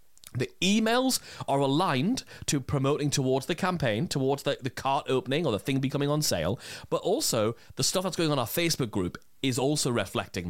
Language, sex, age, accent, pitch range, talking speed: English, male, 30-49, British, 120-175 Hz, 190 wpm